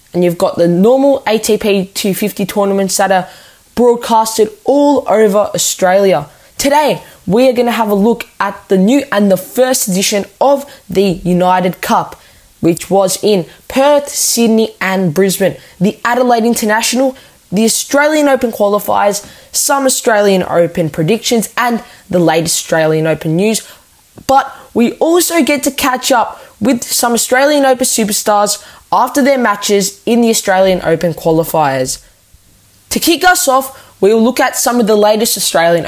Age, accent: 10-29, Australian